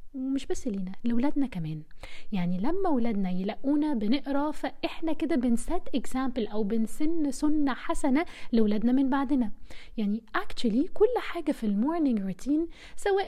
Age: 20-39